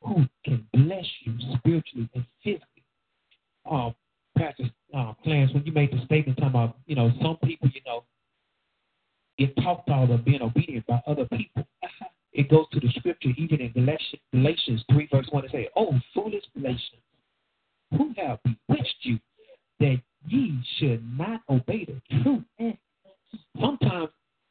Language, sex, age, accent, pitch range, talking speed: English, male, 50-69, American, 125-155 Hz, 145 wpm